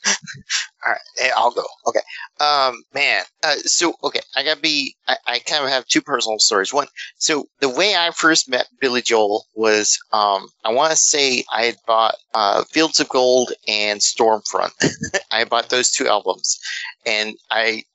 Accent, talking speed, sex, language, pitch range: American, 175 wpm, male, English, 110-140 Hz